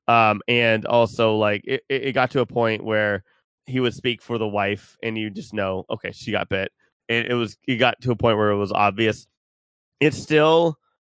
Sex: male